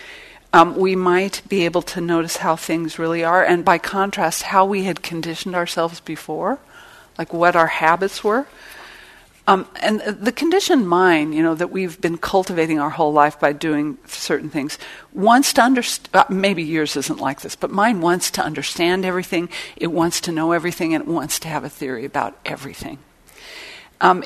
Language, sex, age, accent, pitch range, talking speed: English, female, 50-69, American, 160-195 Hz, 180 wpm